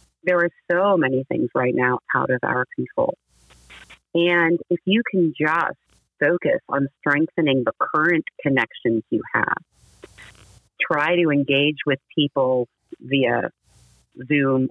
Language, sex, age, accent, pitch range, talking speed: English, female, 40-59, American, 125-170 Hz, 125 wpm